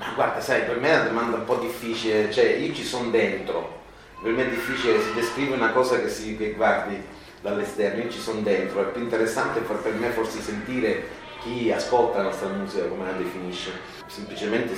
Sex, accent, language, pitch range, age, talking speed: male, native, Italian, 105-125 Hz, 30-49, 205 wpm